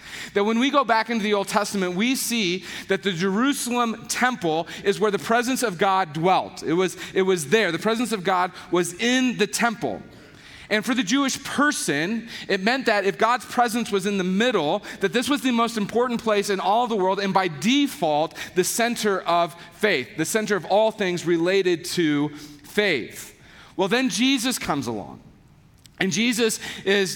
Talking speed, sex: 185 wpm, male